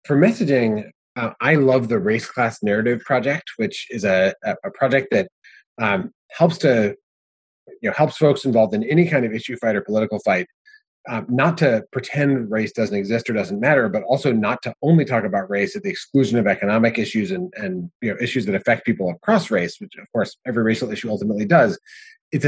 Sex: male